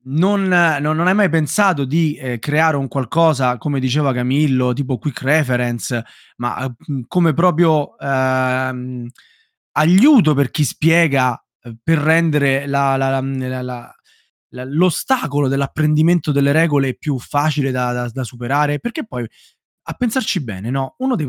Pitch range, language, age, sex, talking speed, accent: 125-155 Hz, Italian, 20-39, male, 150 wpm, native